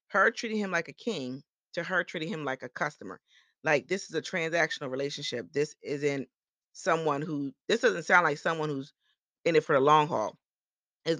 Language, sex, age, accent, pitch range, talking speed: English, female, 30-49, American, 155-195 Hz, 195 wpm